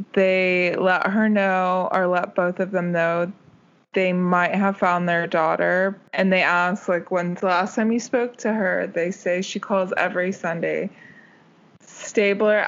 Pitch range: 180-200 Hz